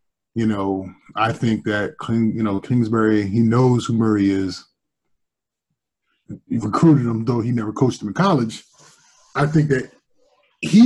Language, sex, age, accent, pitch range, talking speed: English, male, 20-39, American, 115-145 Hz, 150 wpm